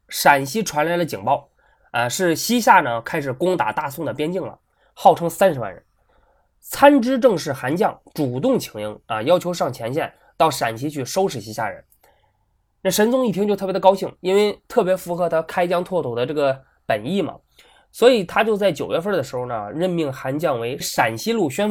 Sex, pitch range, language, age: male, 145-210 Hz, Chinese, 20-39